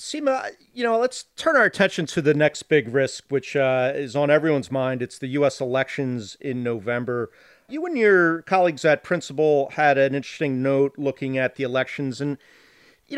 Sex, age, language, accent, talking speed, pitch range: male, 40-59, English, American, 180 wpm, 135-175 Hz